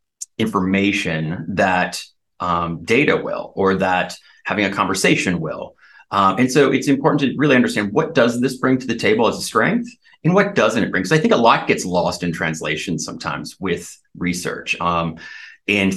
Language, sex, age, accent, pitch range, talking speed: English, male, 30-49, American, 85-125 Hz, 180 wpm